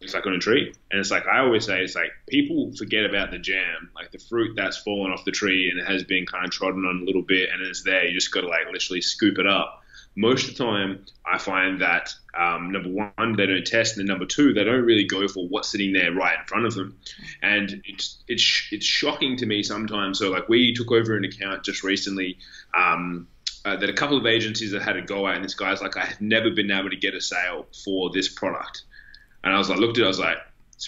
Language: English